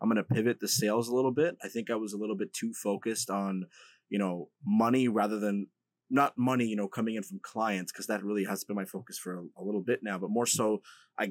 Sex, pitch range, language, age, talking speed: male, 100-130 Hz, English, 20-39, 255 wpm